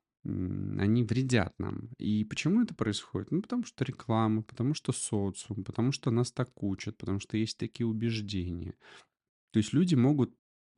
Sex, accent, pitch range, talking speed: male, native, 95-120 Hz, 155 wpm